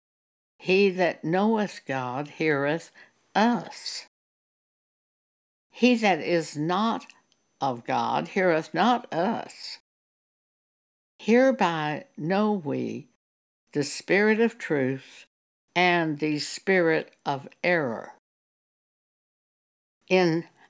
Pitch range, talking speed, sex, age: 145-200 Hz, 80 wpm, female, 60-79